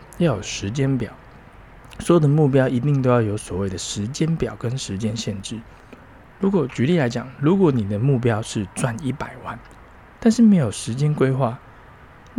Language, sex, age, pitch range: Chinese, male, 20-39, 105-150 Hz